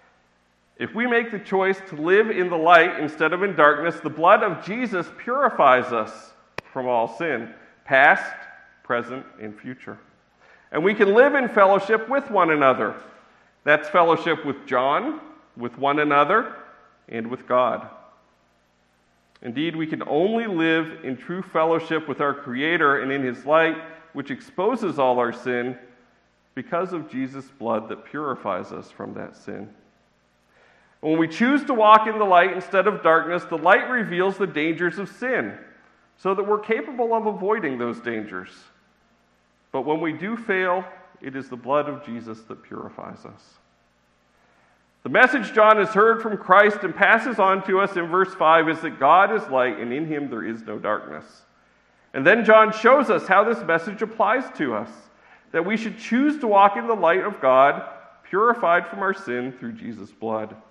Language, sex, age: English, male, 40-59